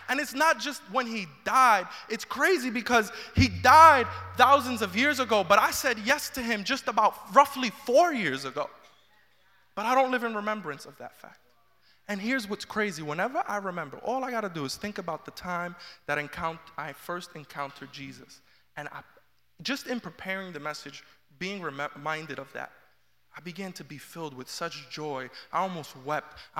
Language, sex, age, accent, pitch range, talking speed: English, male, 20-39, American, 175-265 Hz, 185 wpm